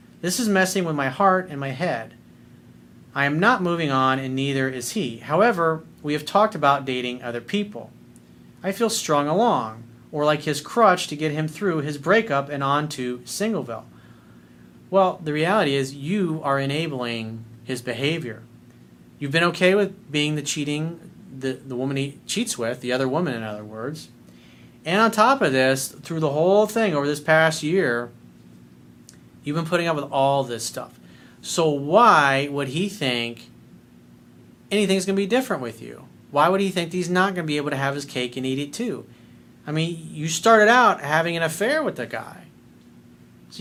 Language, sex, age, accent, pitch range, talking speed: English, male, 40-59, American, 125-175 Hz, 185 wpm